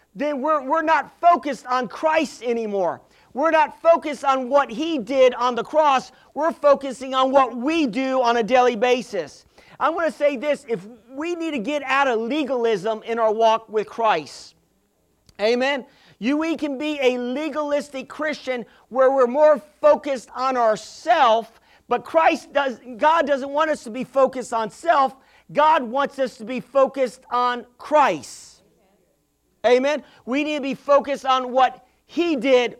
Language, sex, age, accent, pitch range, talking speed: English, male, 40-59, American, 250-295 Hz, 165 wpm